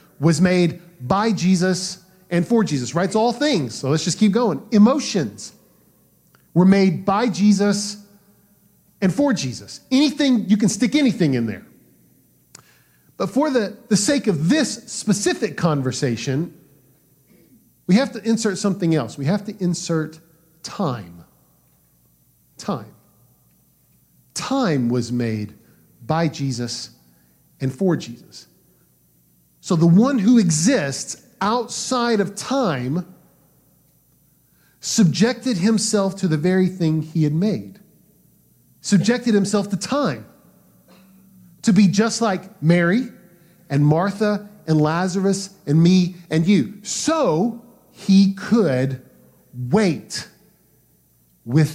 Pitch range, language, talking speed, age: 140-205 Hz, English, 115 wpm, 40-59